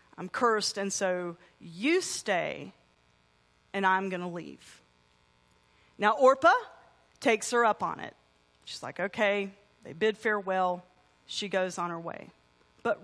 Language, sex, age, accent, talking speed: English, female, 40-59, American, 140 wpm